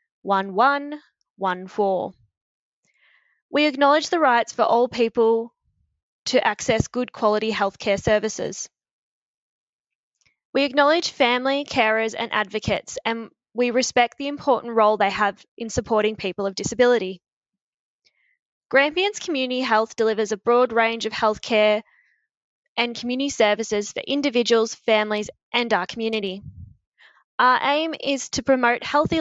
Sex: female